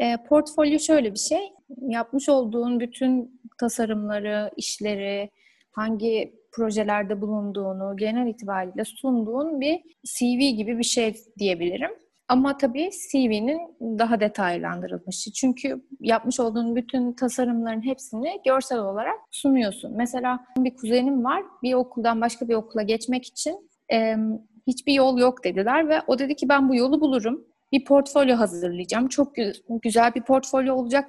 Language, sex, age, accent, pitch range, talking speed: Turkish, female, 30-49, native, 220-270 Hz, 125 wpm